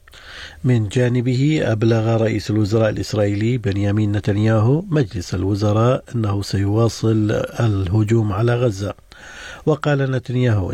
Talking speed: 95 wpm